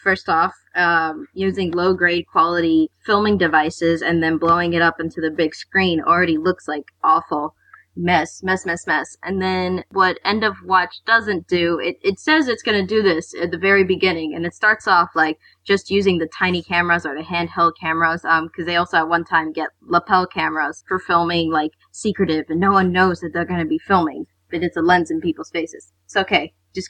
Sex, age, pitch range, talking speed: female, 20-39, 165-195 Hz, 205 wpm